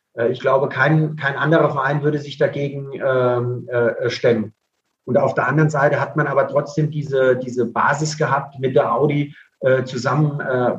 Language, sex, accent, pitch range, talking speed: German, male, German, 130-160 Hz, 165 wpm